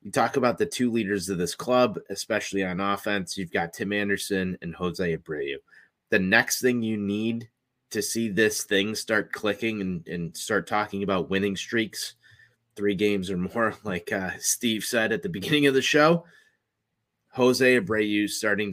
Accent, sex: American, male